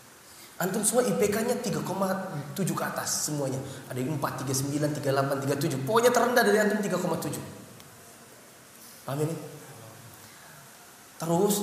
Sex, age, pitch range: male, 20-39, 140-195 Hz